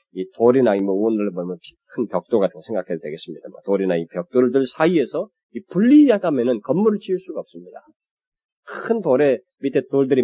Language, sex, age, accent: Korean, male, 30-49, native